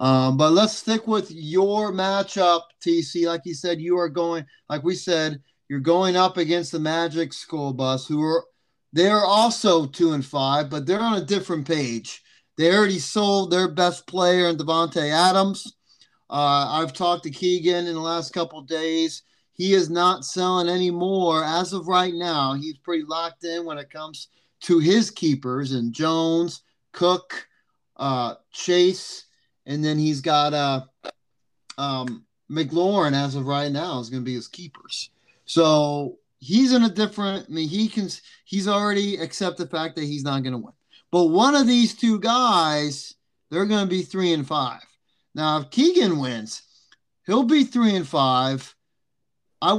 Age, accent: 30-49, American